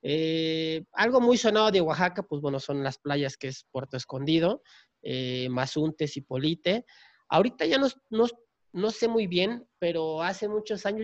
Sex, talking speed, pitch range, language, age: male, 170 wpm, 140-190 Hz, Spanish, 40-59